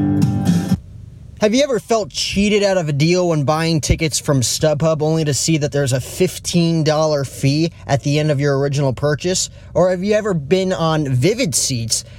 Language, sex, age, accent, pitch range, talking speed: English, male, 20-39, American, 135-175 Hz, 180 wpm